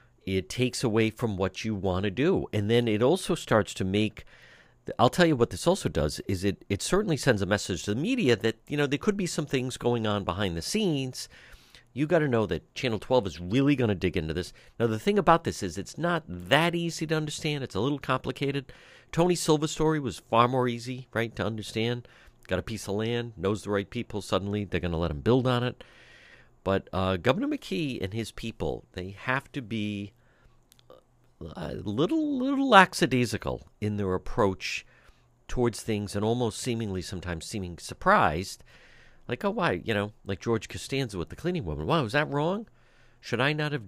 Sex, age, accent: male, 50-69, American